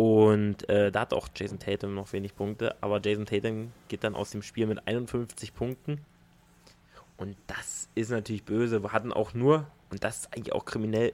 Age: 20-39